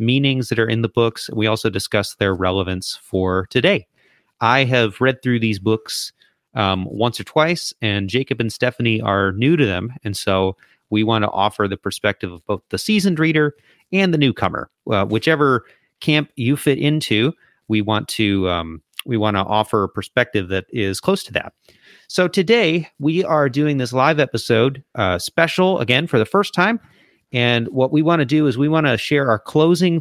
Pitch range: 105-150 Hz